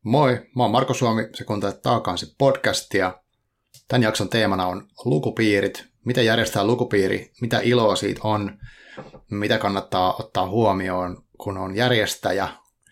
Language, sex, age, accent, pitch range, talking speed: Finnish, male, 30-49, native, 100-120 Hz, 130 wpm